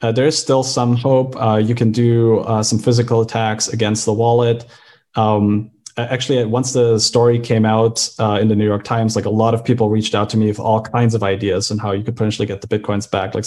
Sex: male